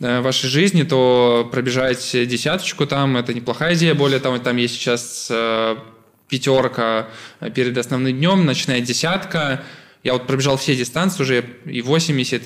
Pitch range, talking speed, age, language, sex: 125-150 Hz, 145 wpm, 20-39, Russian, male